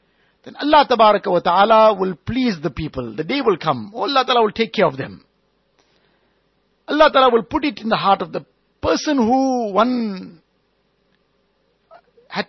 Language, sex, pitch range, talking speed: English, male, 190-250 Hz, 160 wpm